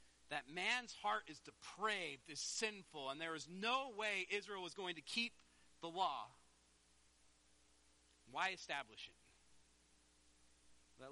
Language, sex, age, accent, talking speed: English, male, 40-59, American, 125 wpm